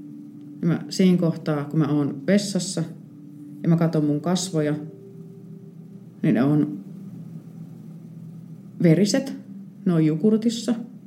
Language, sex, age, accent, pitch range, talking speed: Finnish, female, 30-49, native, 155-210 Hz, 90 wpm